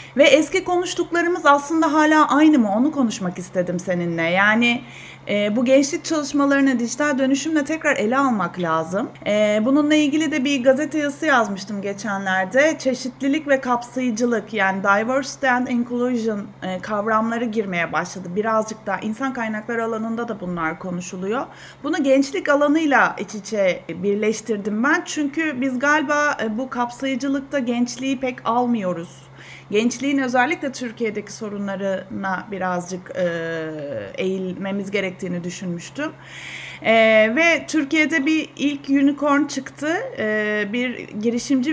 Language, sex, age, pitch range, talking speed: Turkish, female, 30-49, 205-280 Hz, 120 wpm